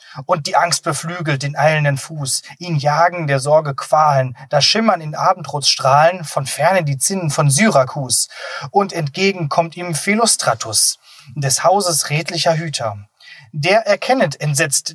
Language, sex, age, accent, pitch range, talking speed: German, male, 30-49, German, 140-185 Hz, 140 wpm